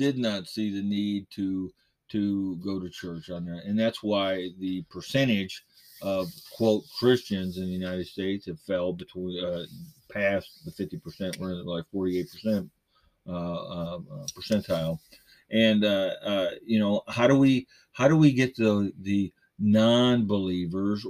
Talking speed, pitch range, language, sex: 155 wpm, 95-115 Hz, English, male